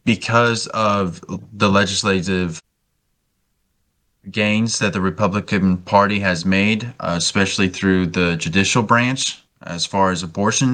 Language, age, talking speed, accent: English, 20-39, 115 wpm, American